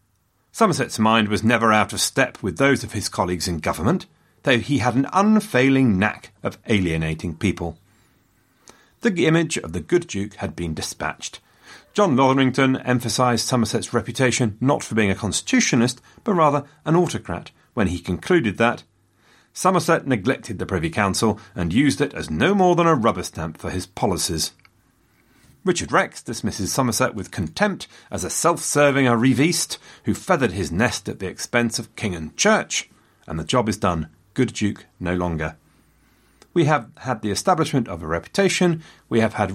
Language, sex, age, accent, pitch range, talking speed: English, male, 40-59, British, 95-135 Hz, 165 wpm